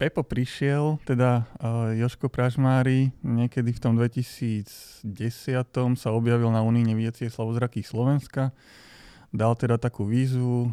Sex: male